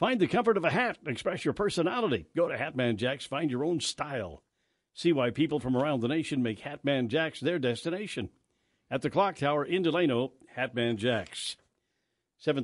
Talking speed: 180 wpm